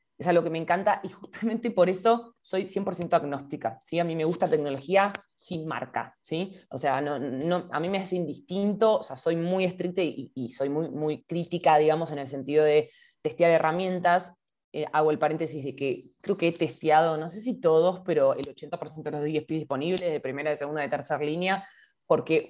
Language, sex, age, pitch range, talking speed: English, female, 20-39, 150-185 Hz, 205 wpm